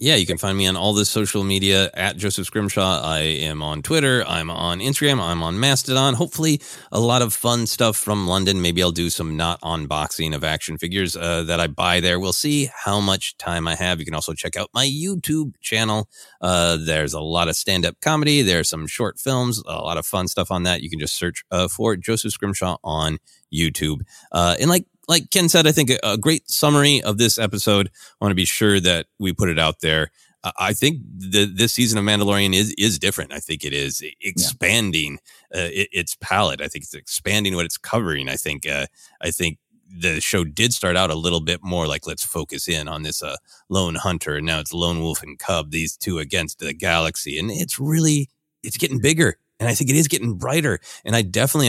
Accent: American